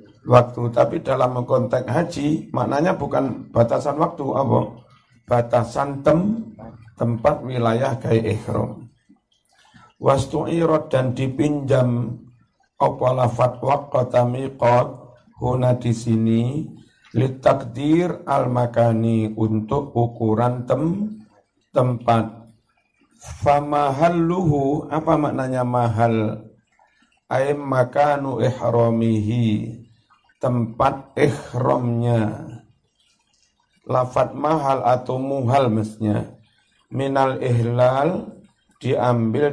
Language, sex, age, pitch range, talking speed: Indonesian, male, 60-79, 115-135 Hz, 70 wpm